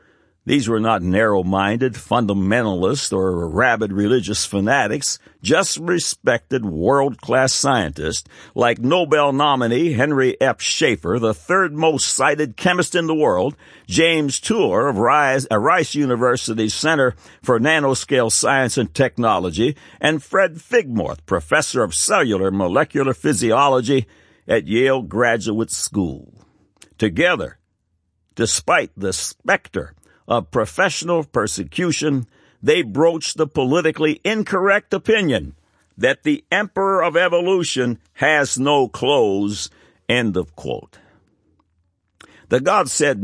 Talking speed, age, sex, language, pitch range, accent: 105 wpm, 60-79, male, English, 100-160 Hz, American